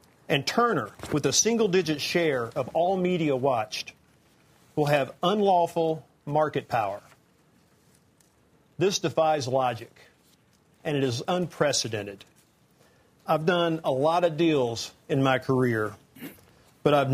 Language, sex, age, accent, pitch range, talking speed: English, male, 50-69, American, 135-165 Hz, 115 wpm